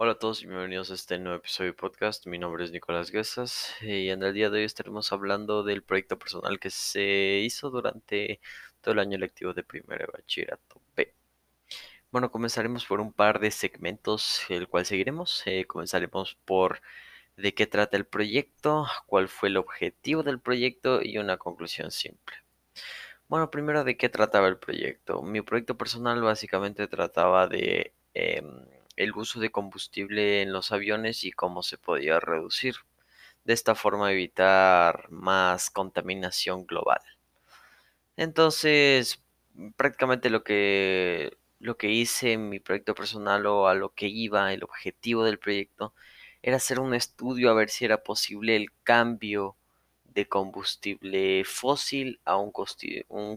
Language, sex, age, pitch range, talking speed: English, male, 20-39, 95-120 Hz, 150 wpm